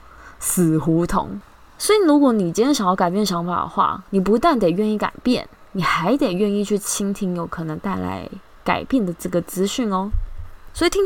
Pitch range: 175-240 Hz